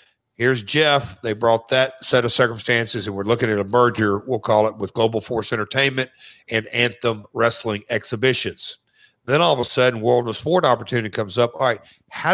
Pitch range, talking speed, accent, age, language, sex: 110-135 Hz, 190 wpm, American, 50-69, English, male